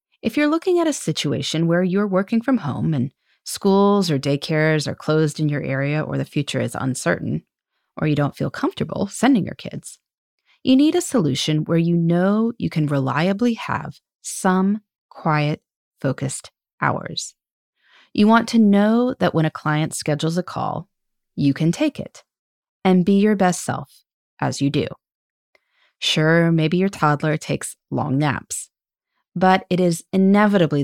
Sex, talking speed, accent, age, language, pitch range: female, 160 wpm, American, 30-49, English, 150-215 Hz